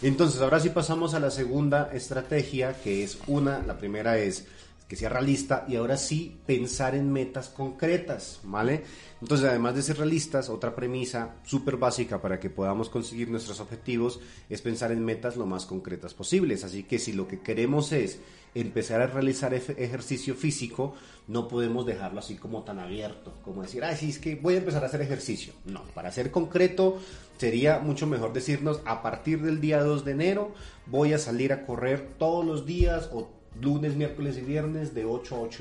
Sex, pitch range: male, 105-140 Hz